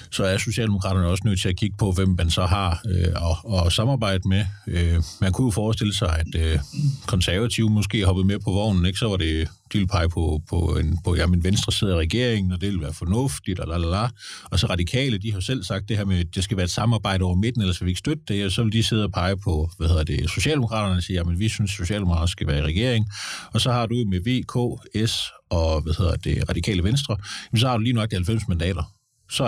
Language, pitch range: Danish, 90-110 Hz